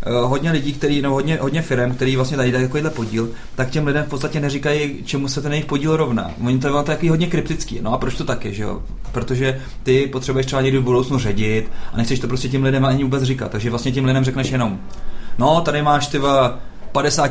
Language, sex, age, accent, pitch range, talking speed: Czech, male, 30-49, native, 120-140 Hz, 230 wpm